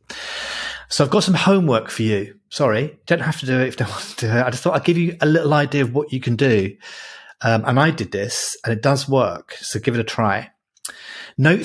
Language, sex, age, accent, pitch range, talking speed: English, male, 30-49, British, 110-140 Hz, 245 wpm